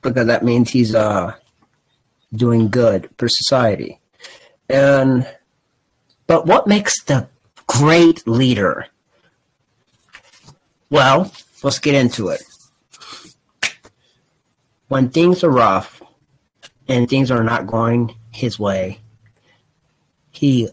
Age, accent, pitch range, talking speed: 40-59, American, 110-150 Hz, 95 wpm